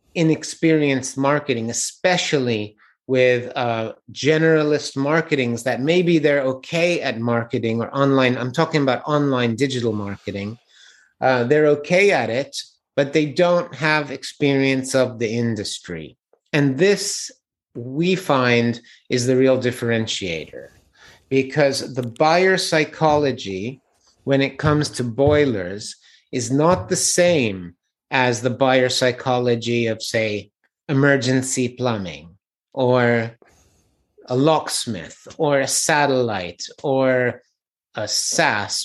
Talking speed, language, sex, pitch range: 110 wpm, English, male, 120-155 Hz